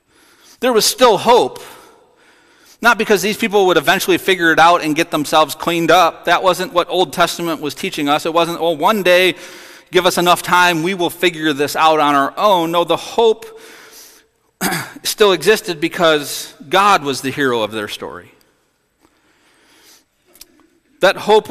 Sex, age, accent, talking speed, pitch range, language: male, 40-59, American, 165 wpm, 155-200 Hz, English